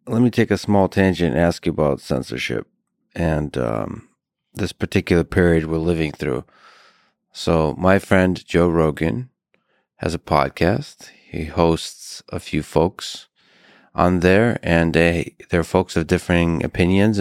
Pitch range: 80-95 Hz